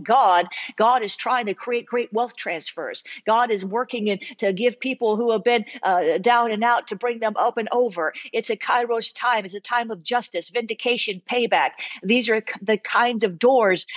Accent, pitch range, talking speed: American, 210-245 Hz, 195 wpm